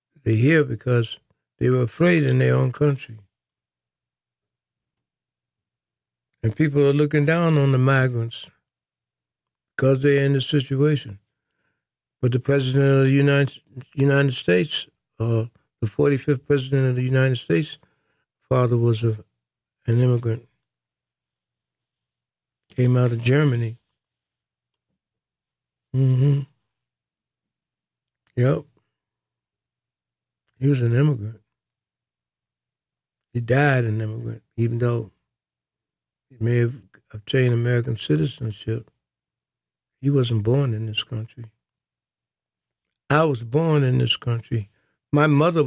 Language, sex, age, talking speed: English, male, 60-79, 105 wpm